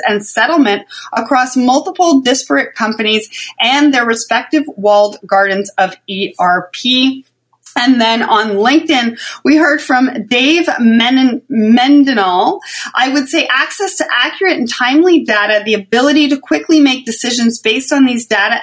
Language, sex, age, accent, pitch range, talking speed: English, female, 30-49, American, 210-300 Hz, 130 wpm